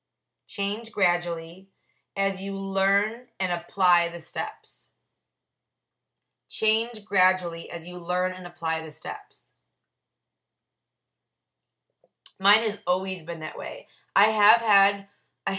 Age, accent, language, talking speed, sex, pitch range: 20-39, American, English, 110 wpm, female, 175-200 Hz